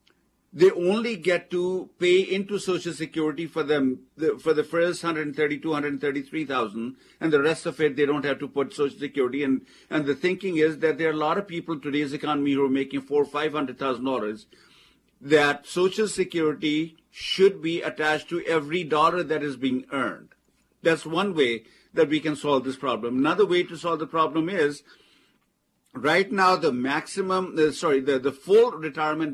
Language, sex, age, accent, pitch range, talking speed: English, male, 50-69, Indian, 145-170 Hz, 180 wpm